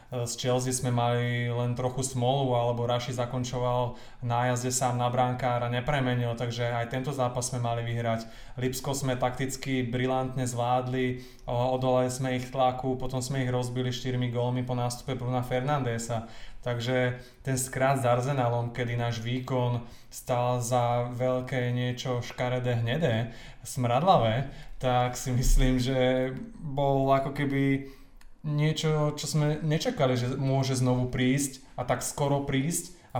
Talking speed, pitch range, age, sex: 140 wpm, 125-140 Hz, 20-39, male